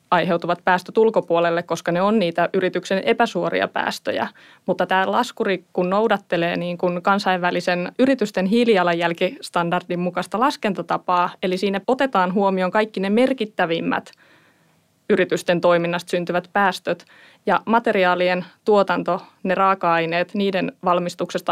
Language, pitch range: Finnish, 175-200 Hz